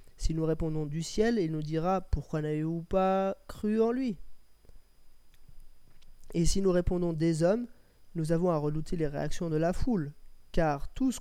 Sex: male